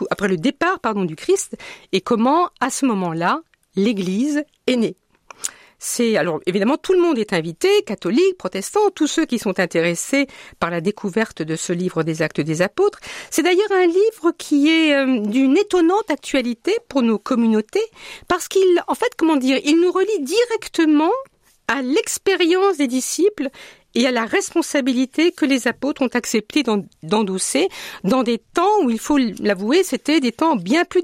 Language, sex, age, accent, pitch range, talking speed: French, female, 50-69, French, 200-335 Hz, 170 wpm